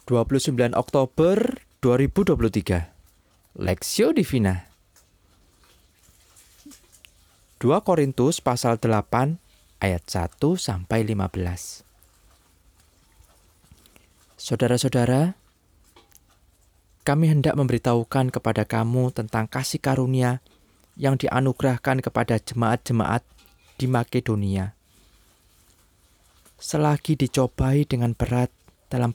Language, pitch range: Indonesian, 90-135 Hz